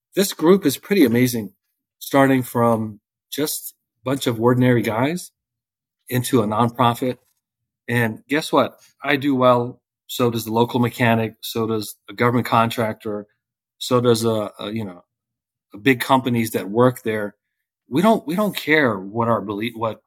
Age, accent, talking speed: 40-59, American, 155 wpm